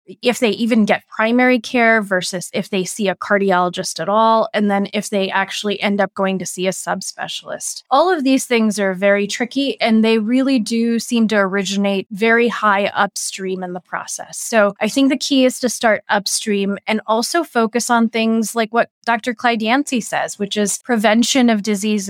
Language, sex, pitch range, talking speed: English, female, 200-255 Hz, 195 wpm